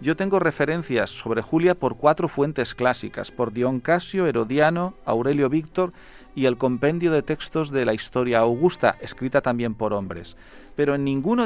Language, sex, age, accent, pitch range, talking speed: Portuguese, male, 40-59, Spanish, 130-175 Hz, 160 wpm